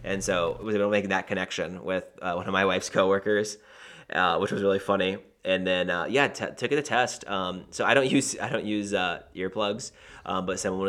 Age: 30-49